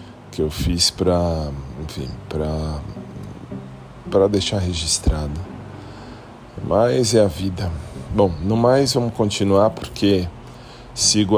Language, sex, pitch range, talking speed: Portuguese, male, 80-105 Hz, 105 wpm